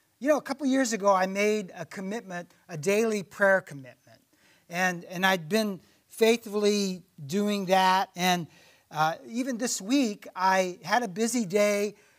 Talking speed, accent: 150 wpm, American